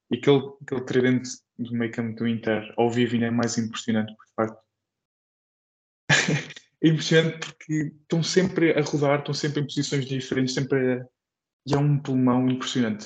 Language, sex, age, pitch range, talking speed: Portuguese, male, 20-39, 115-140 Hz, 165 wpm